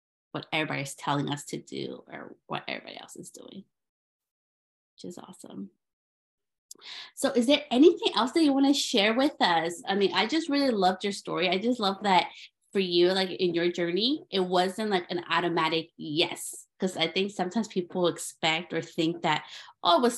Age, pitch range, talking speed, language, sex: 20-39, 165-205 Hz, 185 wpm, English, female